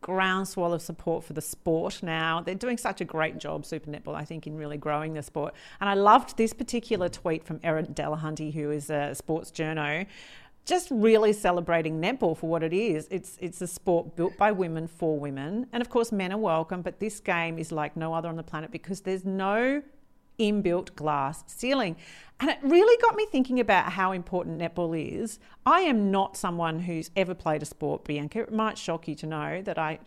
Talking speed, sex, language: 210 wpm, female, English